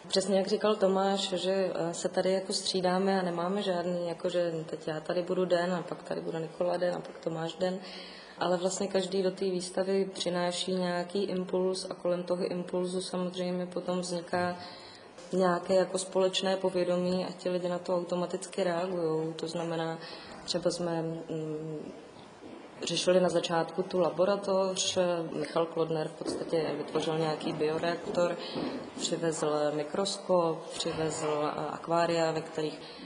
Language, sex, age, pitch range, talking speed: Czech, female, 20-39, 160-185 Hz, 145 wpm